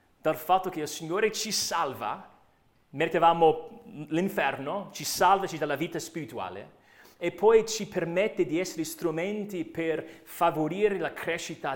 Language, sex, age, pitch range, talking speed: Italian, male, 30-49, 140-195 Hz, 130 wpm